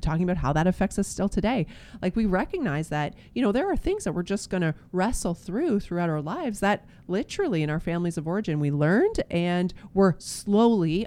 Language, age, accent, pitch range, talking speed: English, 30-49, American, 160-215 Hz, 205 wpm